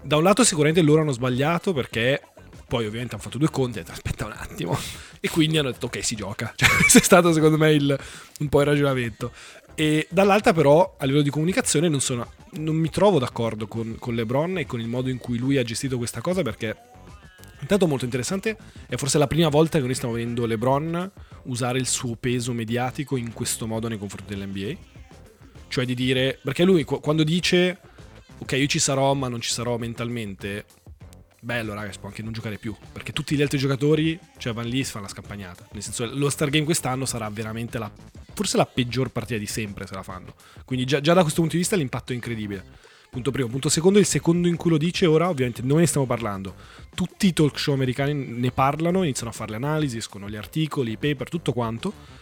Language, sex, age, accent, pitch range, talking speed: Italian, male, 20-39, native, 115-155 Hz, 220 wpm